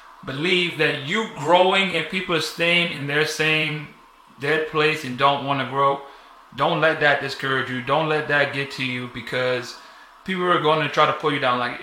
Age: 30-49